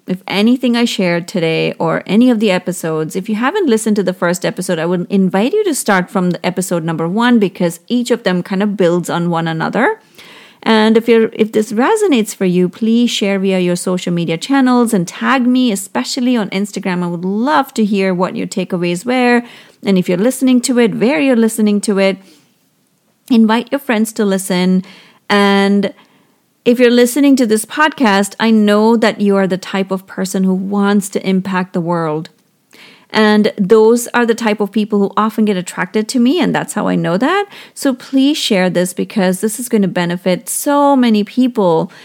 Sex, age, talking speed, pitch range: female, 30-49, 200 wpm, 185-230 Hz